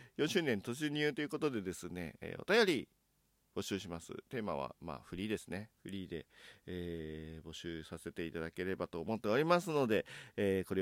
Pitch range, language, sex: 85-110 Hz, Japanese, male